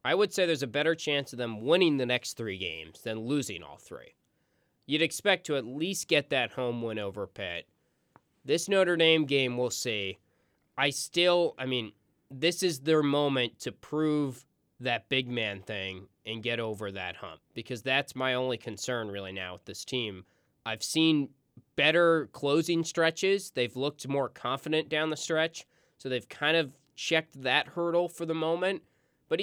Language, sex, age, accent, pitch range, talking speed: English, male, 20-39, American, 115-155 Hz, 175 wpm